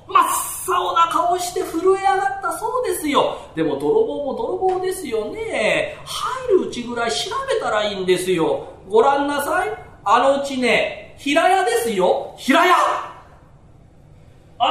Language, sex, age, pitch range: Japanese, male, 40-59, 245-405 Hz